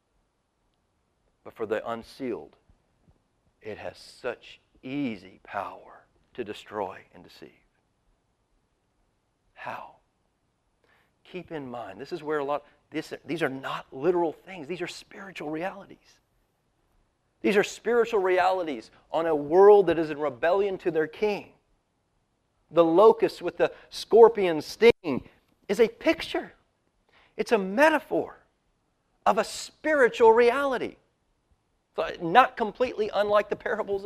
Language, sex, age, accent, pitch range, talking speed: English, male, 40-59, American, 150-235 Hz, 120 wpm